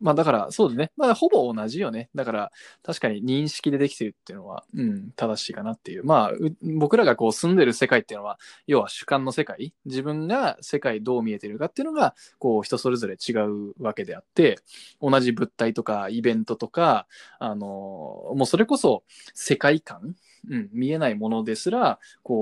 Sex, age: male, 20-39